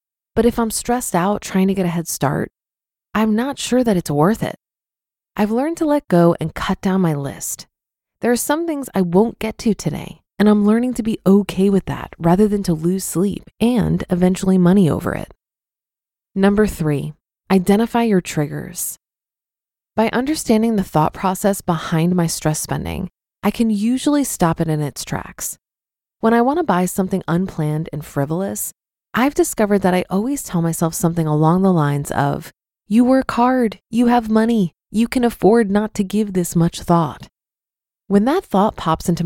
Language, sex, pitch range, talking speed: English, female, 170-230 Hz, 180 wpm